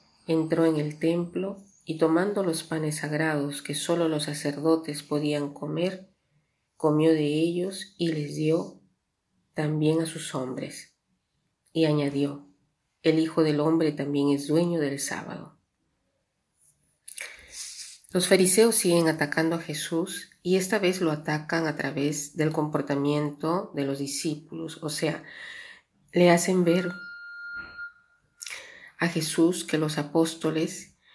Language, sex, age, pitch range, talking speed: Spanish, female, 40-59, 145-170 Hz, 125 wpm